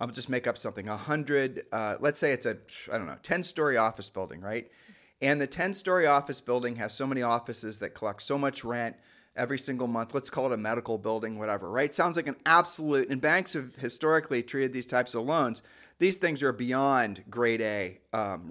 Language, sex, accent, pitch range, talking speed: English, male, American, 115-140 Hz, 205 wpm